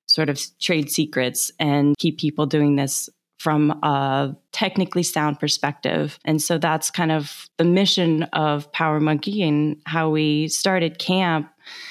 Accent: American